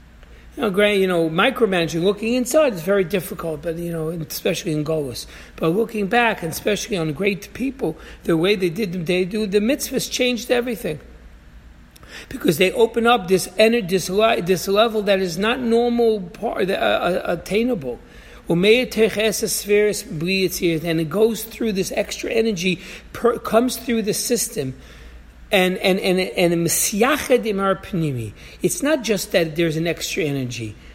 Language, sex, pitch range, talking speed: English, male, 165-230 Hz, 145 wpm